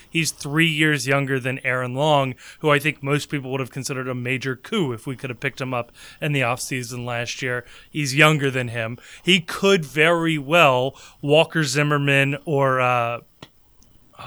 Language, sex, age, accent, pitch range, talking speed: English, male, 30-49, American, 135-165 Hz, 175 wpm